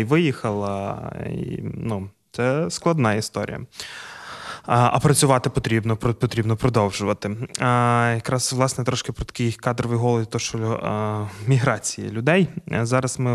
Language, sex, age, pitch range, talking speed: Ukrainian, male, 20-39, 110-130 Hz, 115 wpm